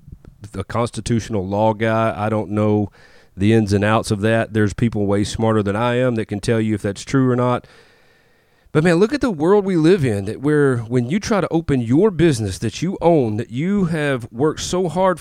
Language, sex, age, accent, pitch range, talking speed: English, male, 30-49, American, 110-145 Hz, 220 wpm